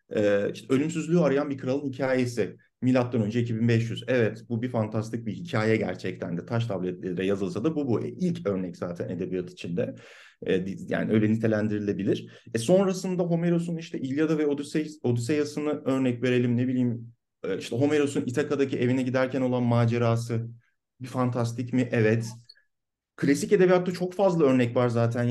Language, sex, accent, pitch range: Turkish, male, native, 115-155 Hz